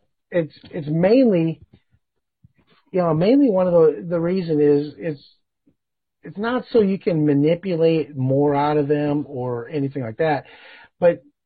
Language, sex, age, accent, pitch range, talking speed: English, male, 40-59, American, 150-200 Hz, 145 wpm